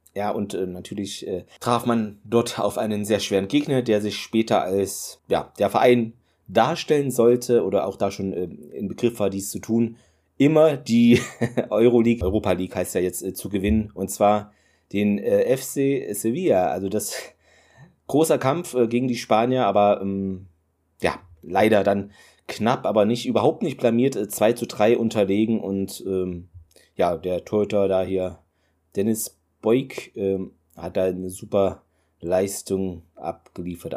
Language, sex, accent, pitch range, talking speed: German, male, German, 95-115 Hz, 160 wpm